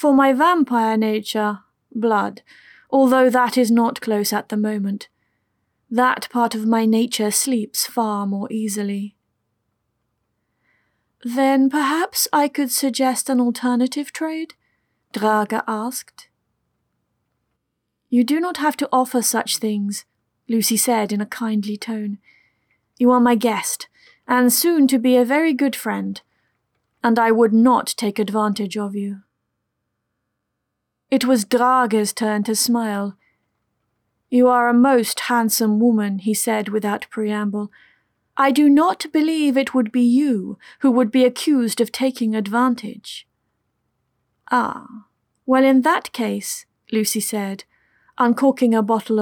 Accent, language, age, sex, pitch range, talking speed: British, English, 30-49, female, 210-255 Hz, 130 wpm